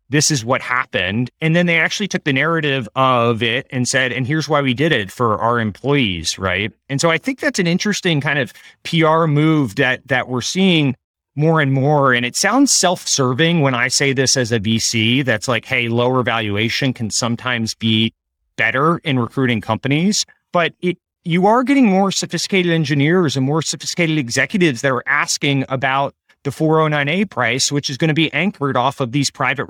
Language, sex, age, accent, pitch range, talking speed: English, male, 30-49, American, 125-165 Hz, 195 wpm